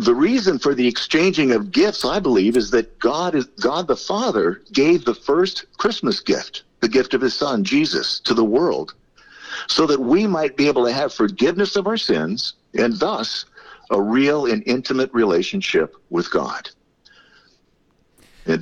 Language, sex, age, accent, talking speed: English, male, 50-69, American, 170 wpm